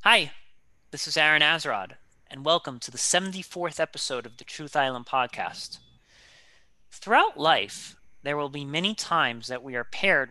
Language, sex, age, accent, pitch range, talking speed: English, male, 30-49, American, 130-170 Hz, 155 wpm